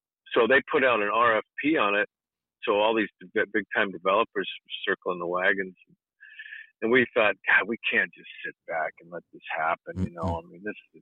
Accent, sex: American, male